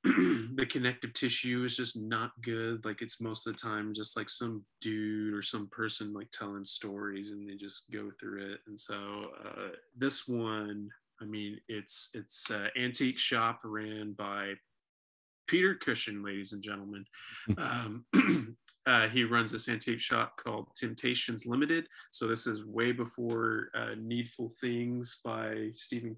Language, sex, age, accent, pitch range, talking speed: English, male, 20-39, American, 105-115 Hz, 155 wpm